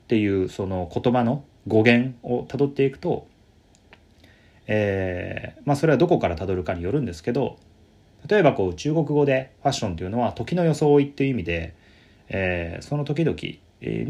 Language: Japanese